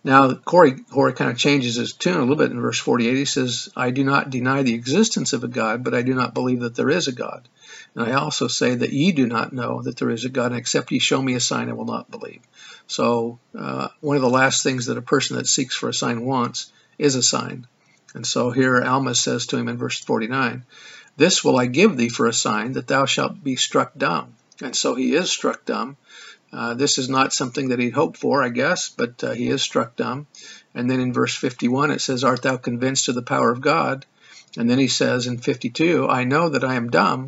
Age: 50-69